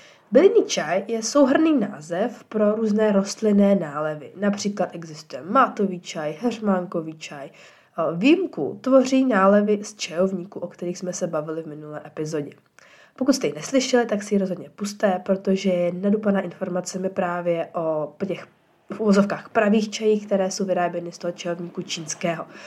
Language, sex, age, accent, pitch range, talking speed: Czech, female, 20-39, native, 175-215 Hz, 140 wpm